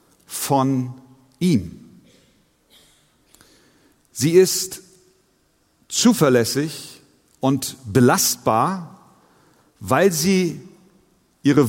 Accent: German